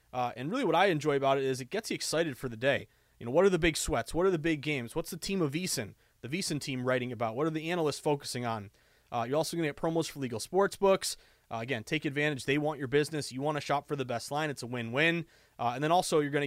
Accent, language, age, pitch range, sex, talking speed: American, English, 30-49, 125-160 Hz, male, 290 wpm